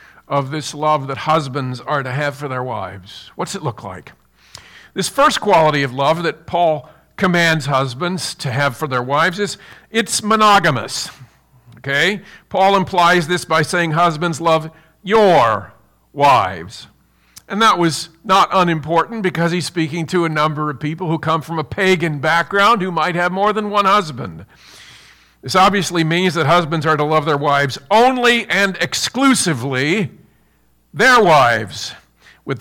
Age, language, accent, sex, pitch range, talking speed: 50-69, English, American, male, 140-185 Hz, 155 wpm